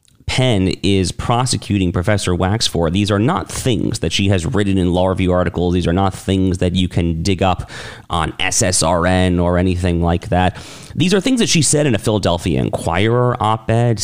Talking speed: 190 wpm